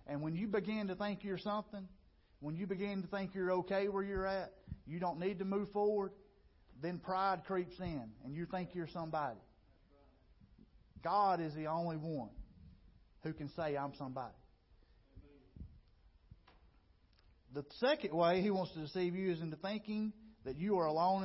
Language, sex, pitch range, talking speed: English, male, 125-190 Hz, 165 wpm